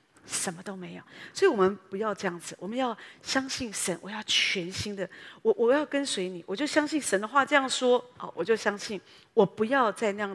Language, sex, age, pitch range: Chinese, female, 40-59, 185-250 Hz